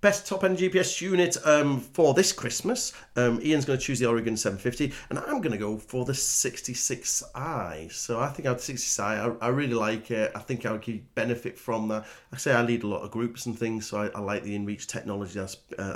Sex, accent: male, British